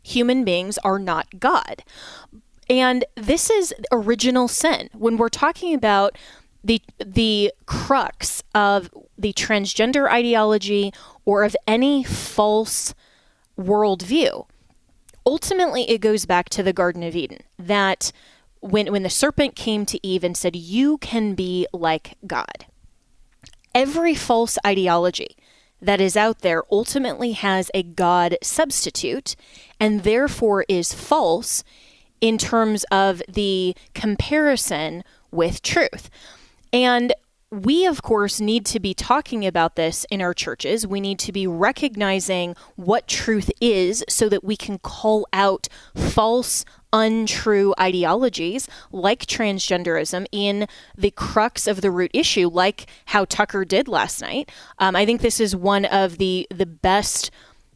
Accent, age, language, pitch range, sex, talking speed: American, 20-39, English, 190-235 Hz, female, 135 wpm